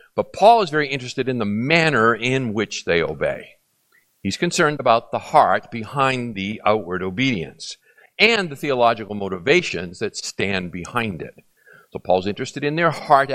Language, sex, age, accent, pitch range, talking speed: English, male, 50-69, American, 115-155 Hz, 155 wpm